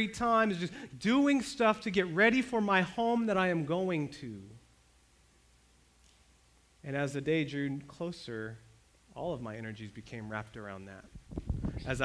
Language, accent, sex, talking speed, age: English, American, male, 155 wpm, 30-49